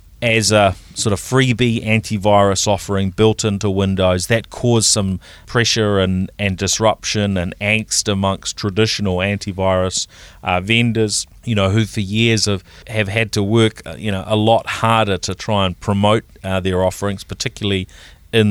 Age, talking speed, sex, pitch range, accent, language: 30-49, 155 wpm, male, 95-110 Hz, Australian, English